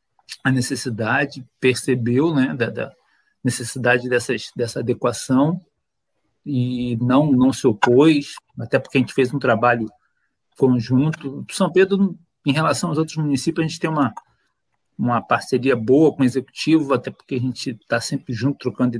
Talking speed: 150 wpm